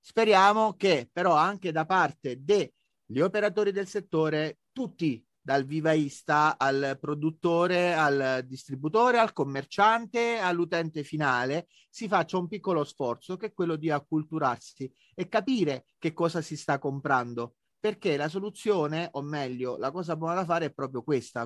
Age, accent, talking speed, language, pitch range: 40-59, native, 145 wpm, Italian, 150-190 Hz